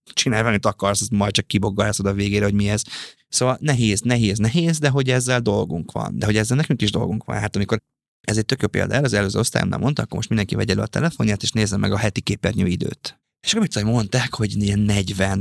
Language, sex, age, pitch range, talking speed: Hungarian, male, 20-39, 105-125 Hz, 235 wpm